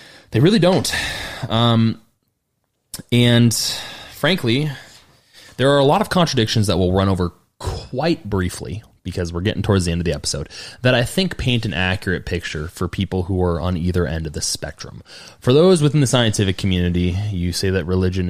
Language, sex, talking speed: English, male, 175 wpm